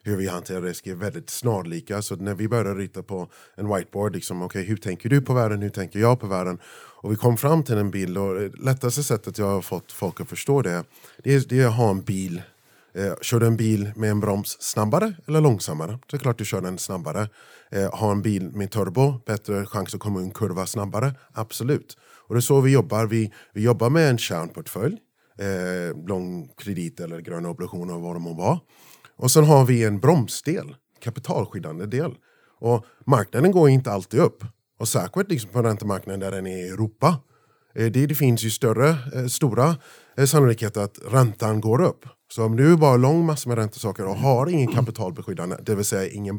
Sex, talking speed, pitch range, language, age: male, 205 wpm, 100-130 Hz, Swedish, 30-49